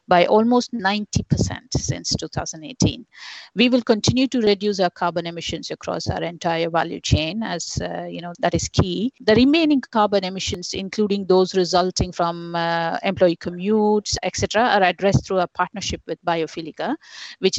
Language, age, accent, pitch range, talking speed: English, 50-69, Indian, 175-220 Hz, 155 wpm